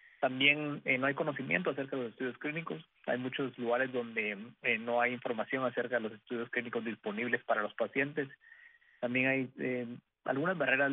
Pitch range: 120-140 Hz